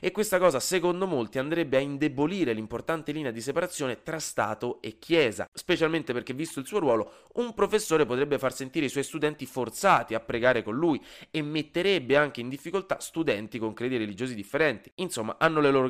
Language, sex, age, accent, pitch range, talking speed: Italian, male, 30-49, native, 115-160 Hz, 185 wpm